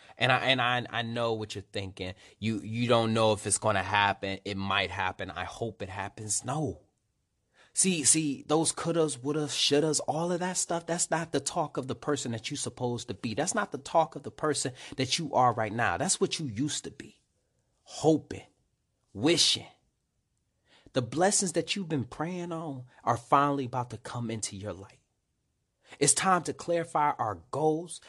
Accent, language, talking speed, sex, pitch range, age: American, English, 190 wpm, male, 110-155 Hz, 30-49